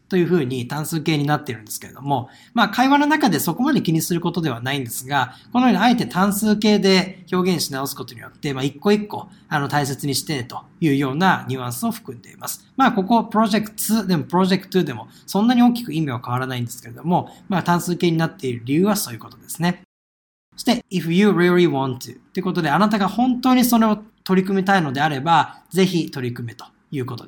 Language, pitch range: Japanese, 140-200 Hz